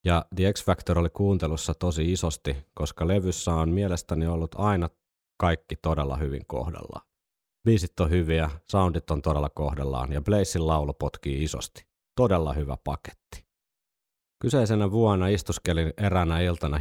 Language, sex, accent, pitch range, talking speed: Finnish, male, native, 75-95 Hz, 130 wpm